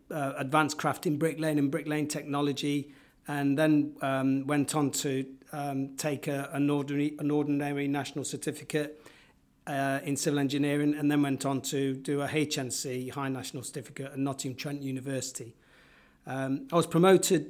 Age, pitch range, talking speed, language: 40-59, 135-150 Hz, 155 wpm, English